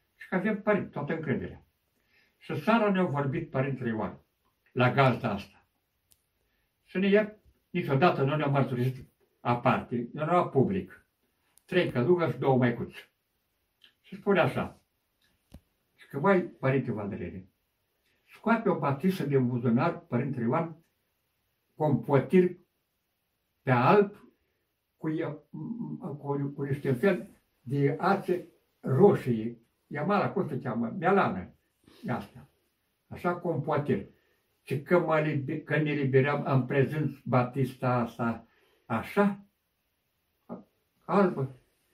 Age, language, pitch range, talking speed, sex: 60-79, Romanian, 130-175 Hz, 105 wpm, male